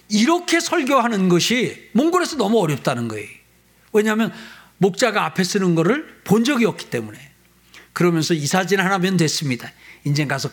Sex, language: male, Korean